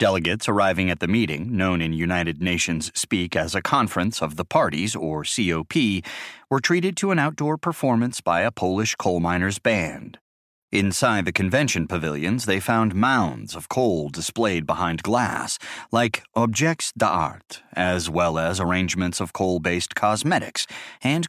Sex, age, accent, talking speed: male, 30-49, American, 150 wpm